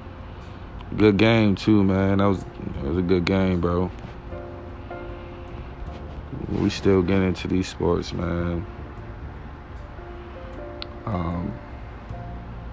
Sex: male